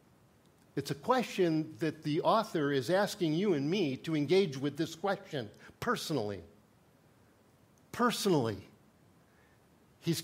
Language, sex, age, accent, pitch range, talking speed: English, male, 50-69, American, 145-200 Hz, 110 wpm